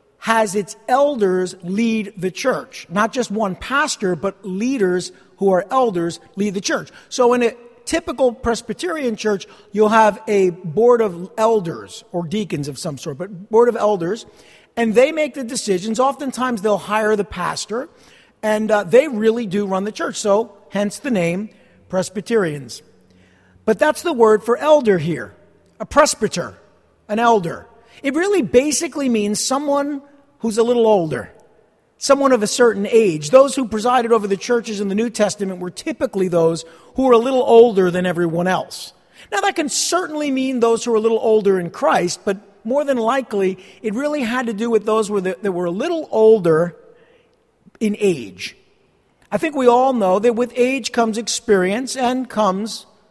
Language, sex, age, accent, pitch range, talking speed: English, male, 50-69, American, 195-255 Hz, 175 wpm